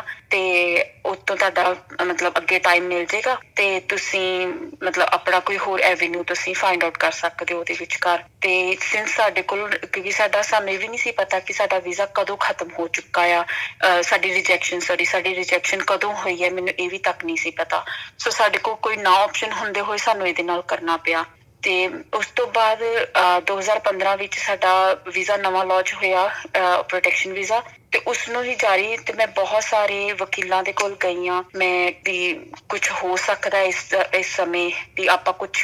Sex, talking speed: female, 165 wpm